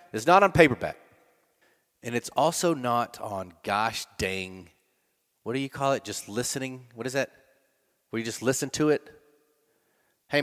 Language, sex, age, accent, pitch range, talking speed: English, male, 30-49, American, 95-130 Hz, 160 wpm